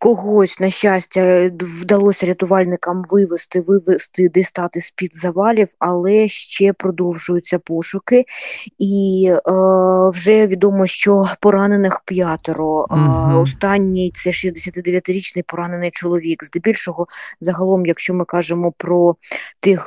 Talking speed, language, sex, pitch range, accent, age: 105 wpm, Ukrainian, female, 165-190 Hz, native, 20-39